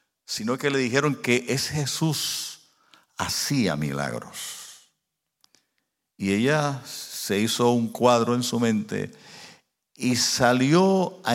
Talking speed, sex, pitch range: 110 wpm, male, 100-130 Hz